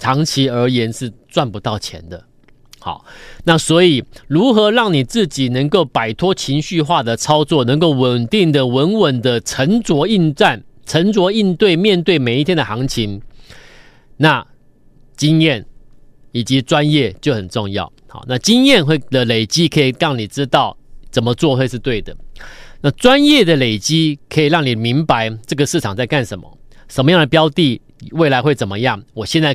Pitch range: 125-165 Hz